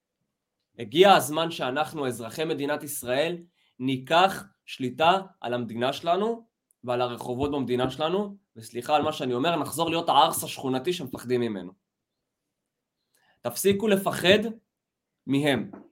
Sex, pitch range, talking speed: male, 145-200 Hz, 110 wpm